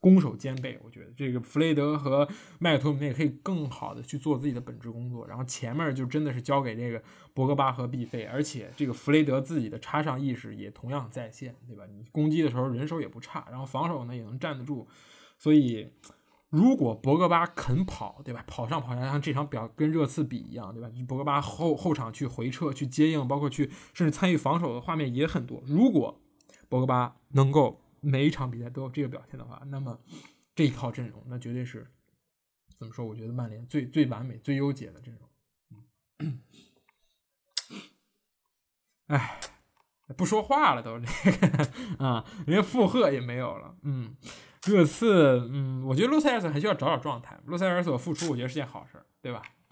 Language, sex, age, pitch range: Chinese, male, 20-39, 125-155 Hz